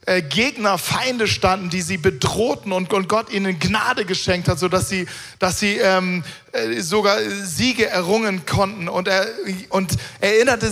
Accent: German